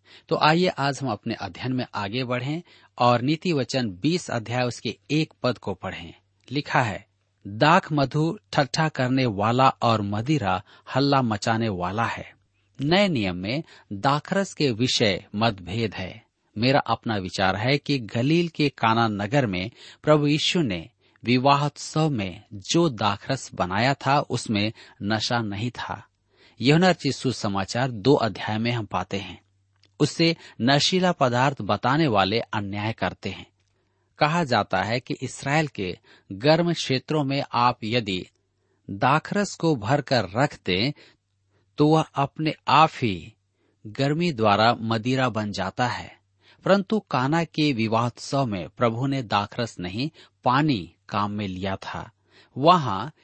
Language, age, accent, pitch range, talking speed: Hindi, 40-59, native, 100-145 Hz, 135 wpm